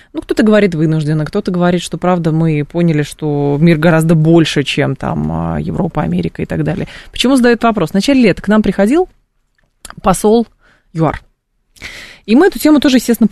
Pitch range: 170-220 Hz